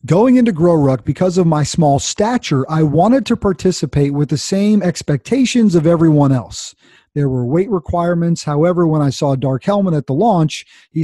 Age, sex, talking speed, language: 40-59, male, 185 wpm, English